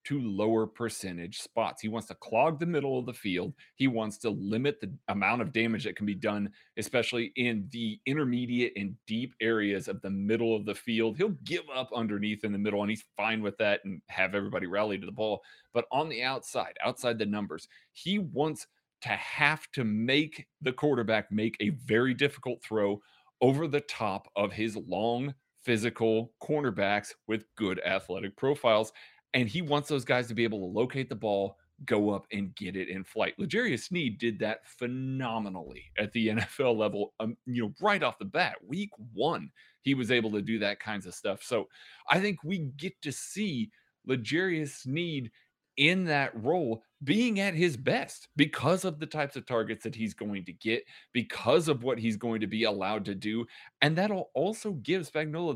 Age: 30-49